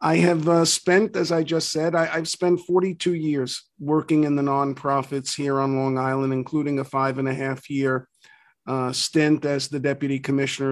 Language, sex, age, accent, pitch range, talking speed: English, male, 50-69, American, 135-155 Hz, 185 wpm